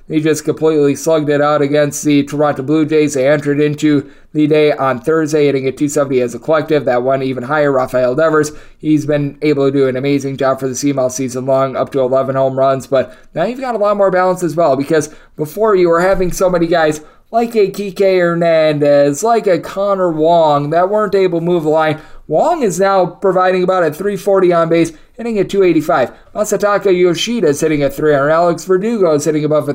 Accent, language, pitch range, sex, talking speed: American, English, 150-180 Hz, male, 210 wpm